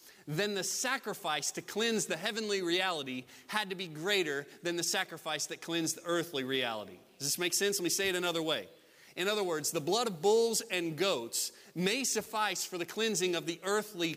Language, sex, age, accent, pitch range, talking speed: English, male, 30-49, American, 160-210 Hz, 200 wpm